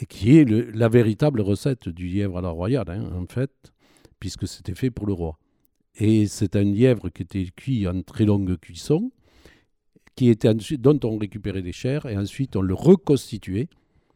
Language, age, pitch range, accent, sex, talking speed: French, 50-69, 95-125 Hz, French, male, 185 wpm